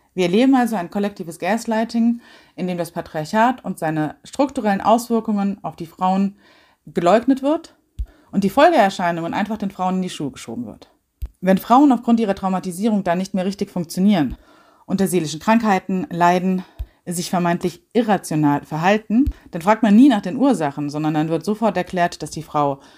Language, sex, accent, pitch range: German, female, German, 170-220 Hz